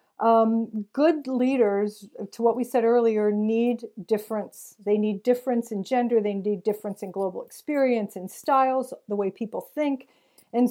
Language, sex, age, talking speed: English, female, 50-69, 155 wpm